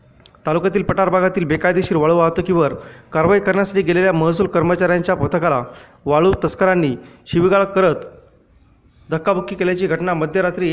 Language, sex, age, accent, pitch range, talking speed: Marathi, male, 30-49, native, 160-190 Hz, 110 wpm